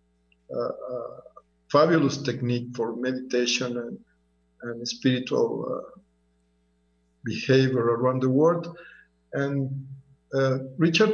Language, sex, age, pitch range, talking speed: English, male, 50-69, 115-150 Hz, 85 wpm